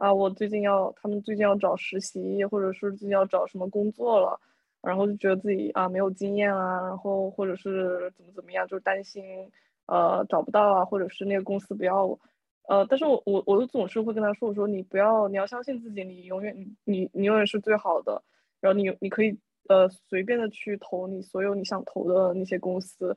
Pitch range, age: 190-225 Hz, 20-39